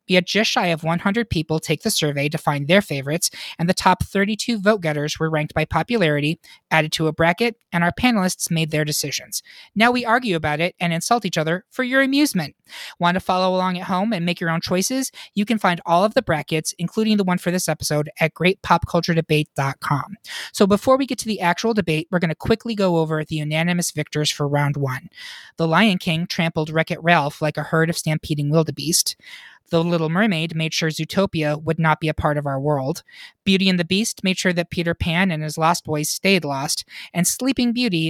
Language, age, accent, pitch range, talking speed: English, 20-39, American, 155-200 Hz, 215 wpm